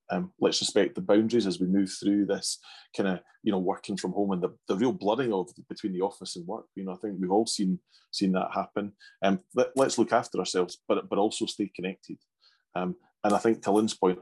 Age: 30-49